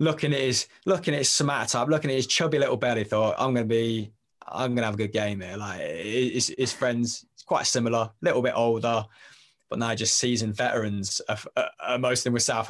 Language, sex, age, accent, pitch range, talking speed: English, male, 20-39, British, 110-130 Hz, 220 wpm